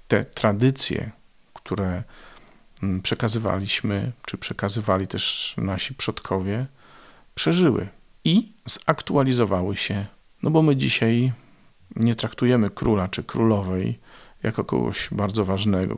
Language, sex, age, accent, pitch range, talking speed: Polish, male, 50-69, native, 95-120 Hz, 100 wpm